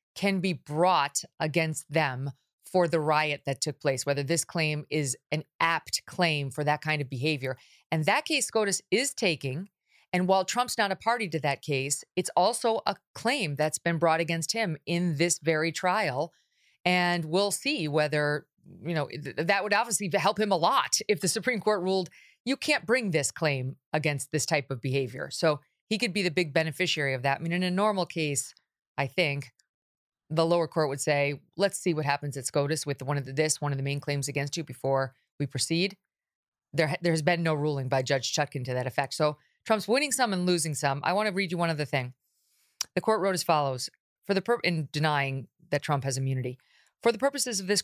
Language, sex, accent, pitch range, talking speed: English, female, American, 145-180 Hz, 210 wpm